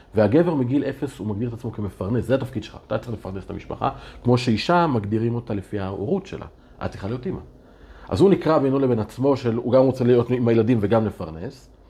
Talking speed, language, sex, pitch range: 205 wpm, Hebrew, male, 100-130 Hz